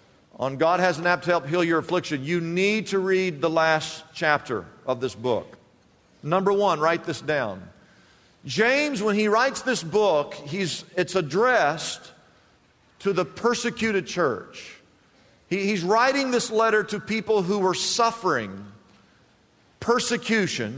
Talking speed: 140 wpm